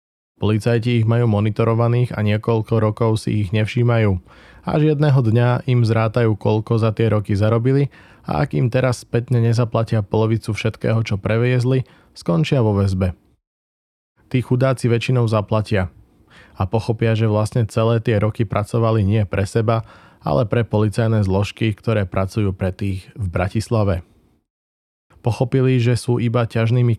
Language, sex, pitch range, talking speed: Slovak, male, 105-120 Hz, 140 wpm